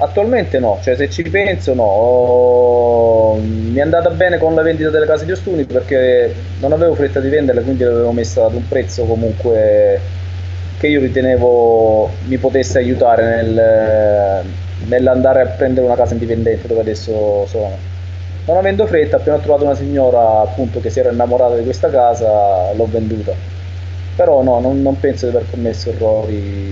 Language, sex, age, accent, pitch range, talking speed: Italian, male, 20-39, native, 95-125 Hz, 165 wpm